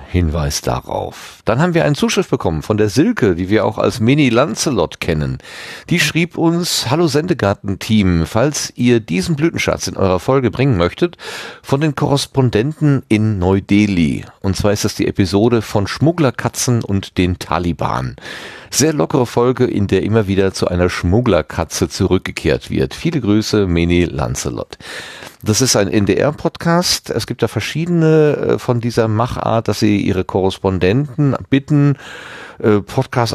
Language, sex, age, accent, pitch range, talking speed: German, male, 40-59, German, 90-125 Hz, 145 wpm